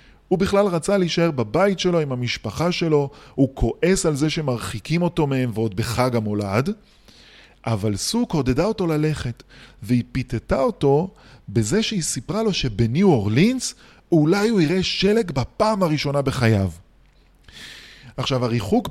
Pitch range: 120-175 Hz